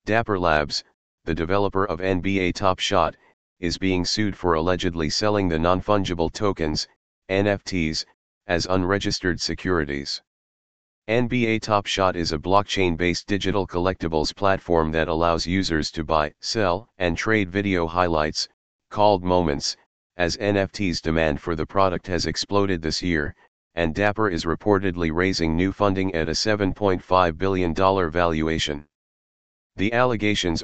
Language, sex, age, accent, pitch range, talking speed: English, male, 40-59, American, 80-95 Hz, 125 wpm